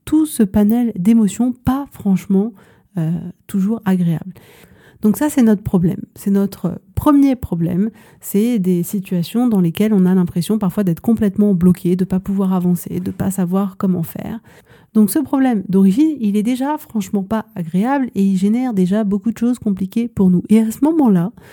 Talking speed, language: 175 wpm, French